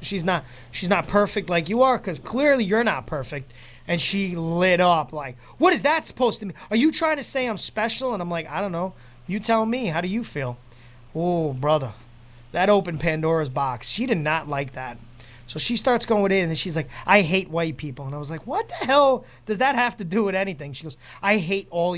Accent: American